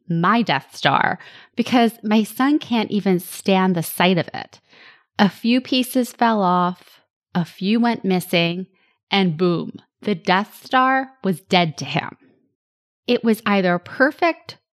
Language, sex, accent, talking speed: English, female, American, 140 wpm